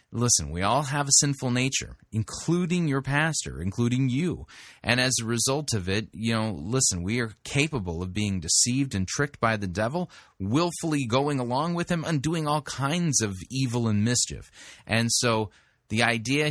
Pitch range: 105-135 Hz